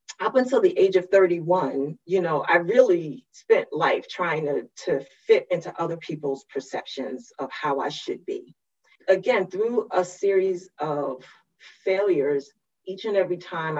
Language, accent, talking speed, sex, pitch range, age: English, American, 150 wpm, female, 150-200 Hz, 30-49